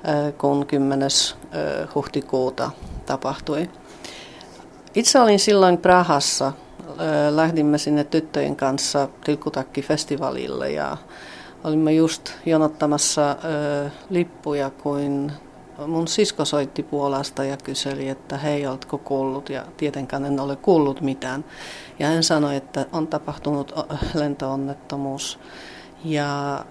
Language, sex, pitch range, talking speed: Finnish, female, 135-155 Hz, 95 wpm